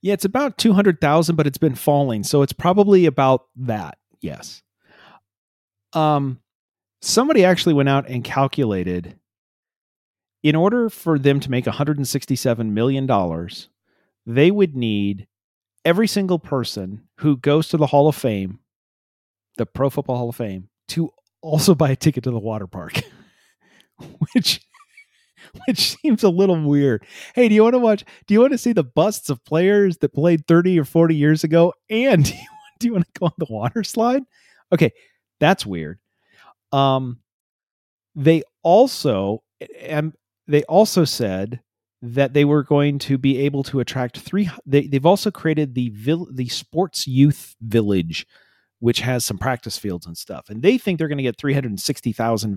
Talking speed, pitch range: 160 wpm, 115-170 Hz